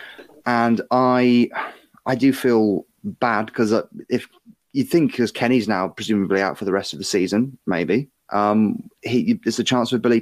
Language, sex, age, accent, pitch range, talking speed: English, male, 30-49, British, 100-130 Hz, 165 wpm